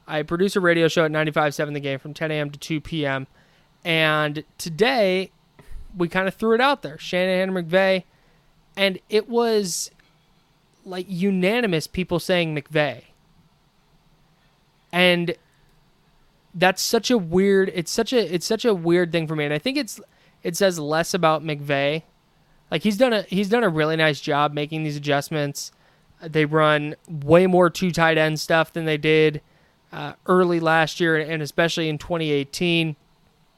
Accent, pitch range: American, 150-180 Hz